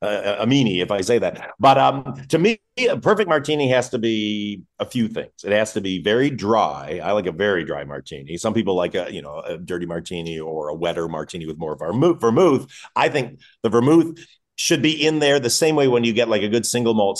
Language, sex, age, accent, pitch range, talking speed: English, male, 40-59, American, 95-130 Hz, 235 wpm